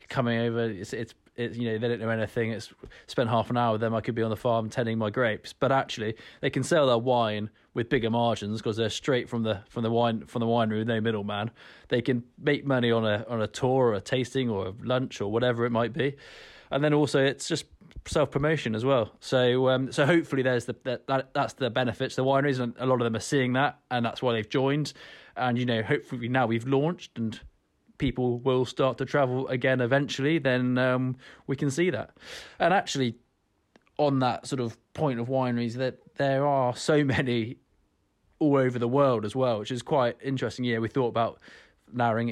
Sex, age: male, 20-39